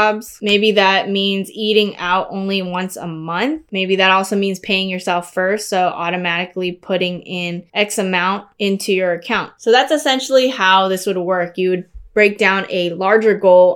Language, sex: English, female